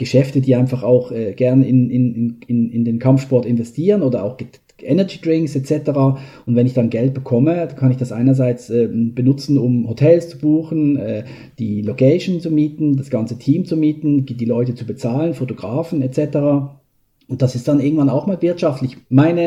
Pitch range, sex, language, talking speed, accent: 125-150 Hz, male, German, 185 wpm, German